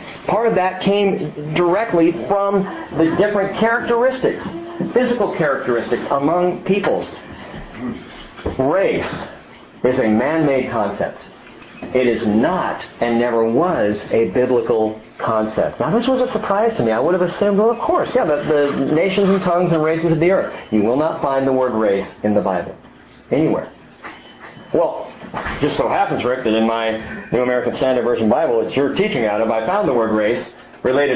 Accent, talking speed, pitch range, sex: American, 170 wpm, 120-195 Hz, male